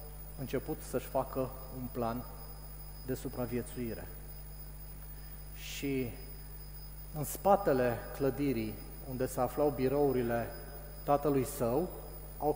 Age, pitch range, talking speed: 30-49, 130-150 Hz, 85 wpm